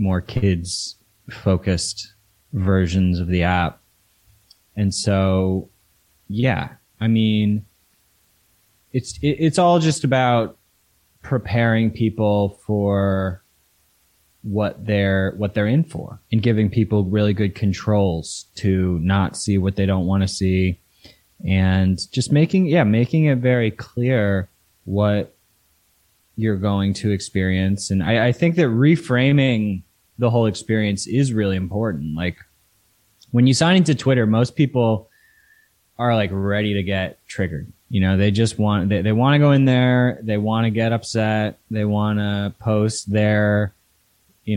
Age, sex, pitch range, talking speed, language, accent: 20-39, male, 95-110 Hz, 140 wpm, English, American